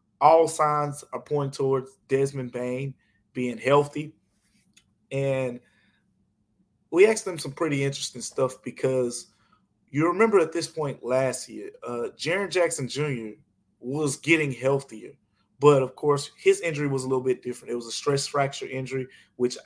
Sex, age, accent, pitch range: male, 20-39, American, 125-155 Hz